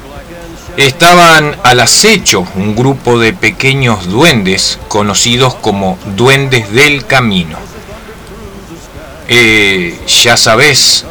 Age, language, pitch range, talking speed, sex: 40-59, Spanish, 100-130 Hz, 85 wpm, male